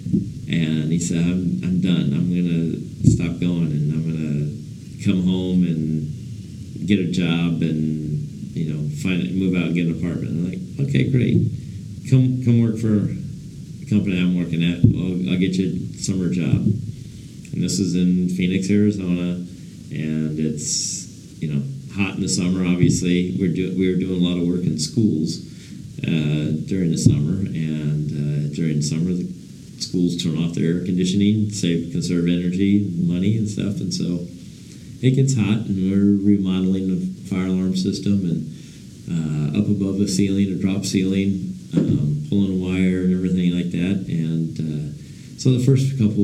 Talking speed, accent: 175 wpm, American